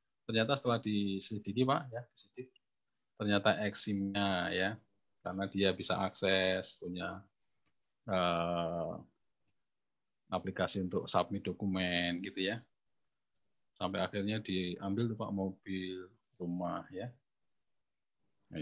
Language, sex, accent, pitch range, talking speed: Indonesian, male, native, 95-120 Hz, 95 wpm